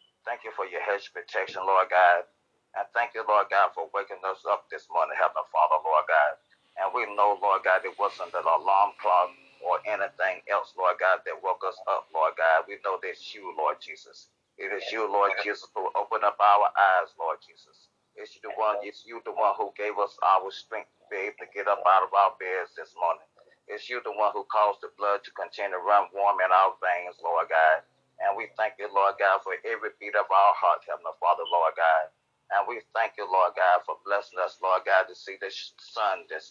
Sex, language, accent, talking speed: male, English, American, 225 wpm